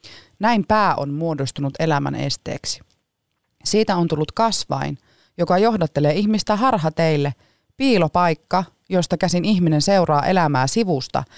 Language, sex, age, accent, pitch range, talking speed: Finnish, female, 30-49, native, 135-175 Hz, 110 wpm